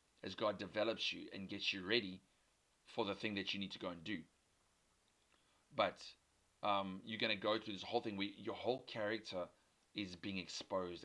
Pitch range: 95-110 Hz